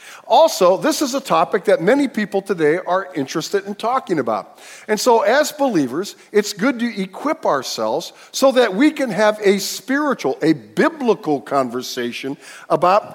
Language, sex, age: English, male, 50-69